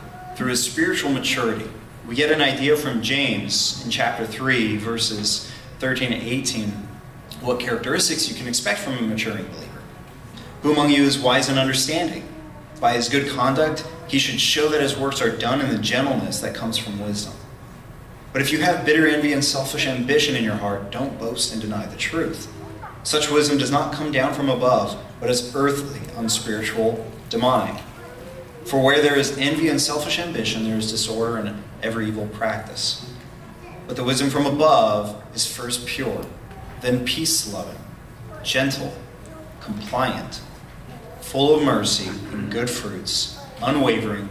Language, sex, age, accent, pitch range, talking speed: English, male, 30-49, American, 110-145 Hz, 160 wpm